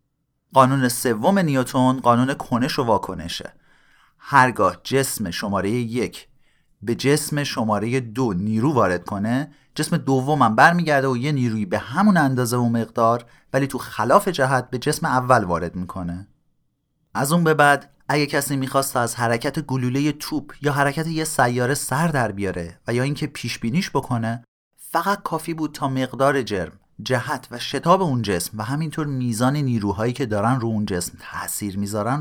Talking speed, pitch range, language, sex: 160 wpm, 115-145 Hz, Persian, male